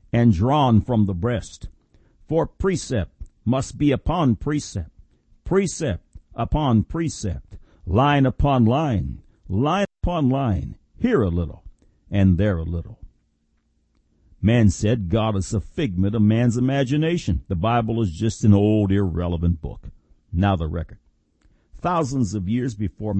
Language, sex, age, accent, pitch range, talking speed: English, male, 60-79, American, 90-130 Hz, 130 wpm